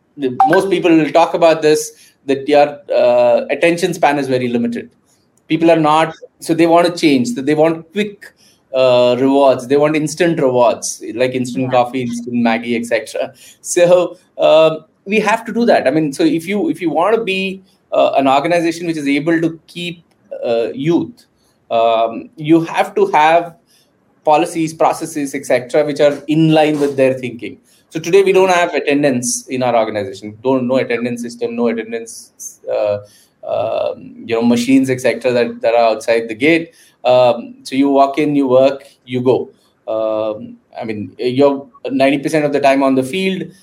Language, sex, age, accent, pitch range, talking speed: English, male, 20-39, Indian, 125-170 Hz, 175 wpm